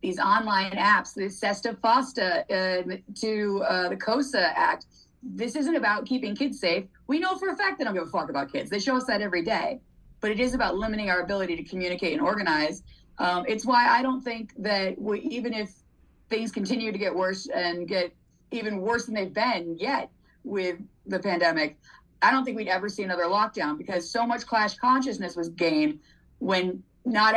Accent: American